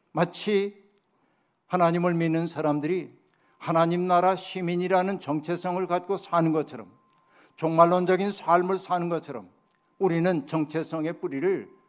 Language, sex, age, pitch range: Korean, male, 60-79, 160-190 Hz